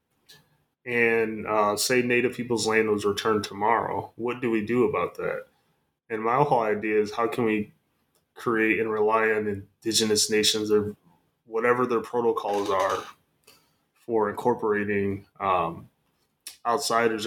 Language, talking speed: English, 130 wpm